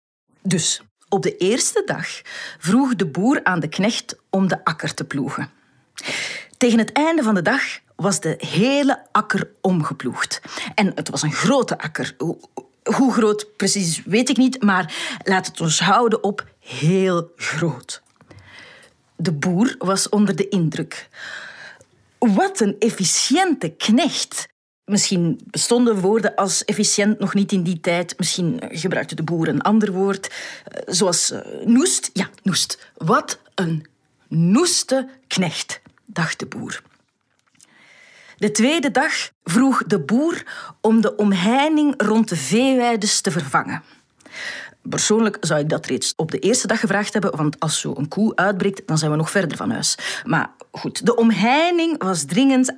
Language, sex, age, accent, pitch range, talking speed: Dutch, female, 30-49, Dutch, 175-230 Hz, 145 wpm